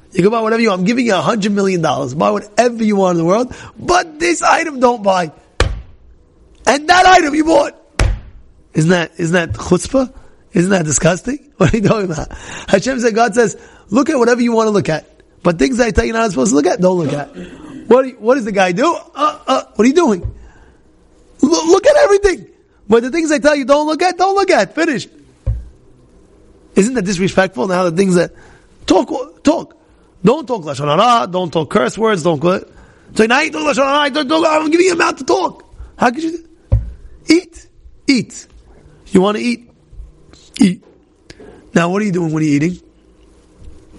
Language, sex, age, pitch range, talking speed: English, male, 30-49, 175-285 Hz, 205 wpm